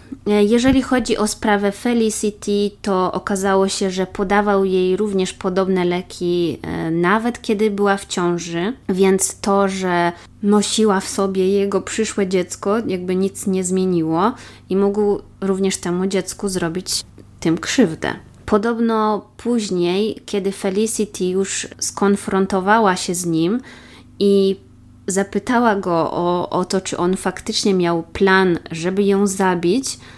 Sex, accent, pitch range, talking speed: female, native, 180-210 Hz, 125 wpm